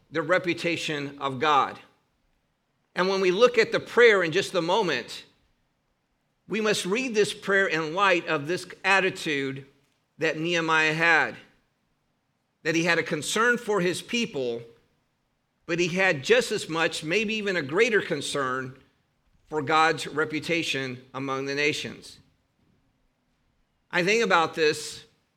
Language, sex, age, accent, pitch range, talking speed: English, male, 50-69, American, 145-180 Hz, 135 wpm